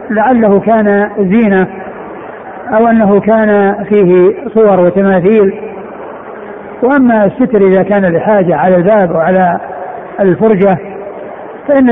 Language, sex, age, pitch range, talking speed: Arabic, male, 60-79, 190-215 Hz, 95 wpm